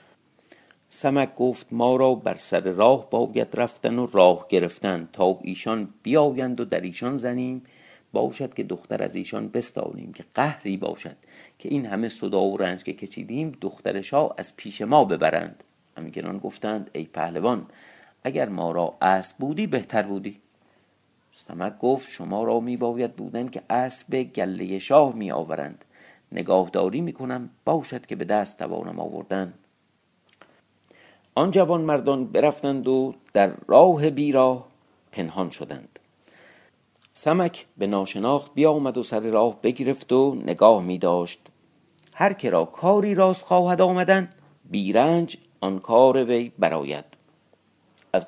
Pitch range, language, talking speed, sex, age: 95-140 Hz, Persian, 135 wpm, male, 50-69